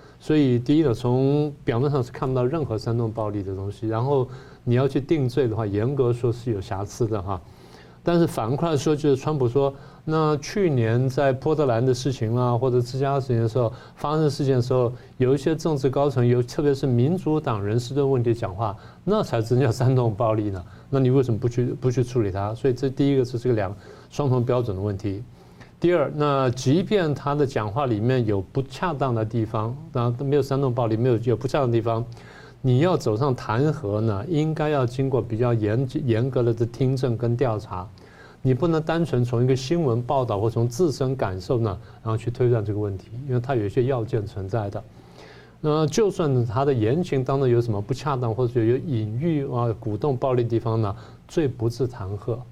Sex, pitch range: male, 115-140 Hz